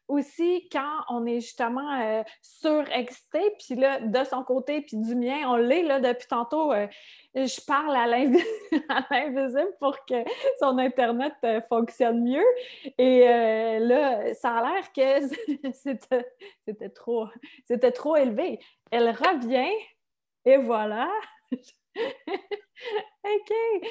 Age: 30-49